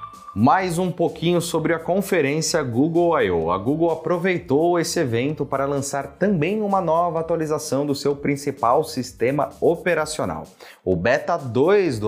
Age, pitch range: 30-49, 120-165 Hz